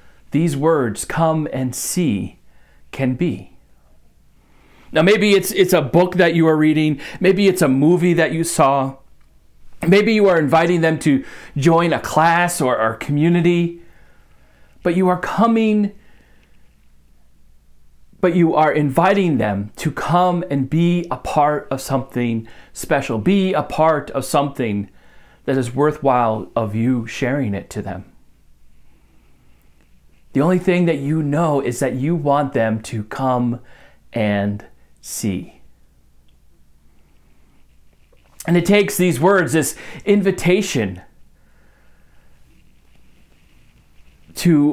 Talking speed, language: 120 wpm, English